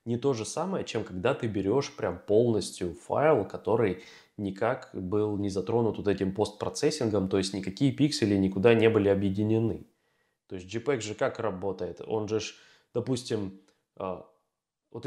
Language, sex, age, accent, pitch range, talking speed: Russian, male, 20-39, native, 105-145 Hz, 145 wpm